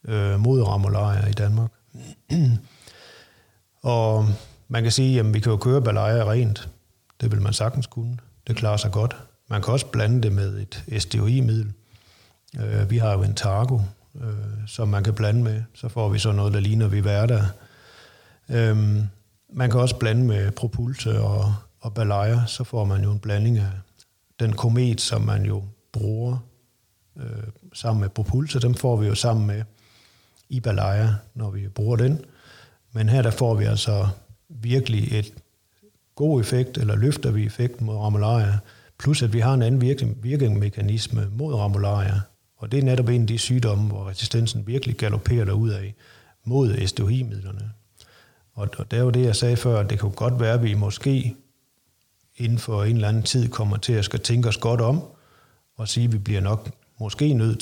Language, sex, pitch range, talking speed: Danish, male, 105-120 Hz, 175 wpm